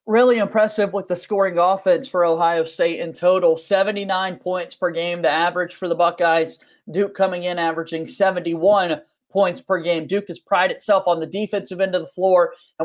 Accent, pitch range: American, 185-235 Hz